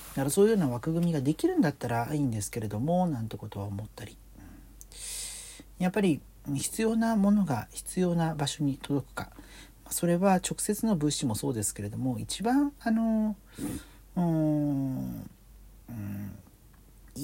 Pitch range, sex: 110-170 Hz, male